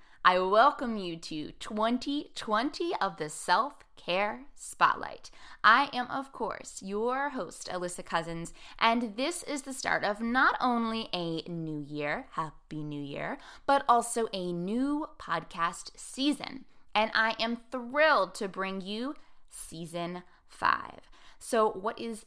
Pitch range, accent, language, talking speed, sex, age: 180-260 Hz, American, English, 130 wpm, female, 20-39